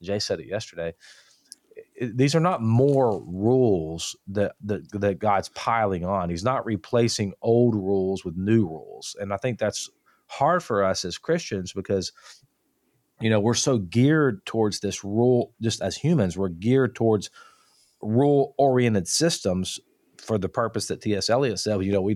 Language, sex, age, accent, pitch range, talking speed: English, male, 40-59, American, 100-125 Hz, 160 wpm